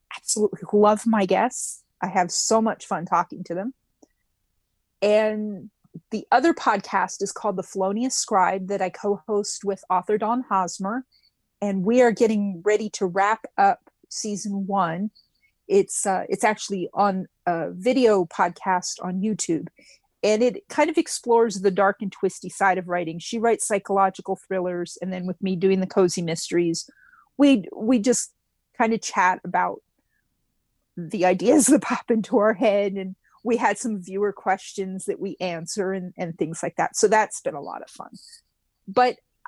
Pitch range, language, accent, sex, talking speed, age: 190-240 Hz, English, American, female, 165 wpm, 30-49